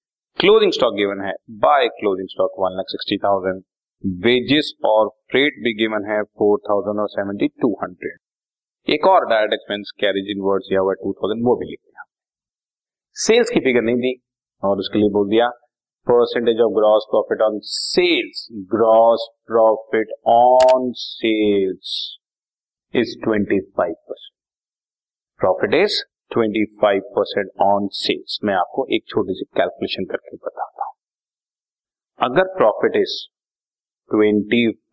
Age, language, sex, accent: 40-59, Hindi, male, native